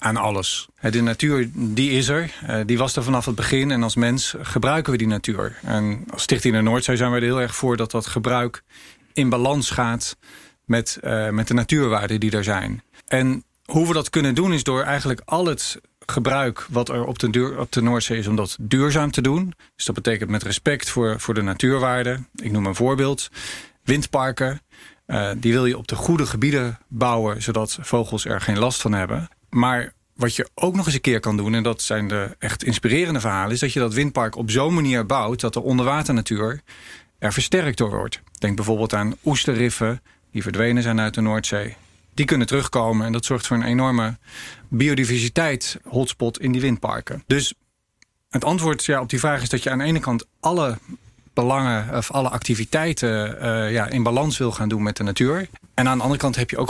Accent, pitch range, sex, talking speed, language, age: Dutch, 110-130 Hz, male, 205 wpm, Dutch, 40-59